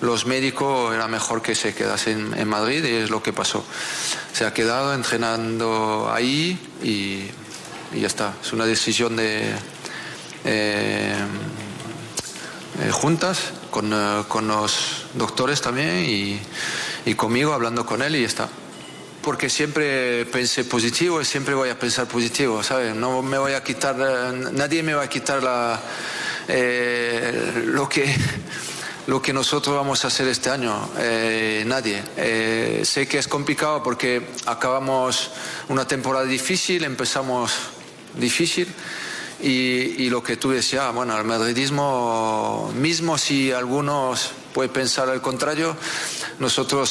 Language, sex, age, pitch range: Spanish, male, 40-59, 115-140 Hz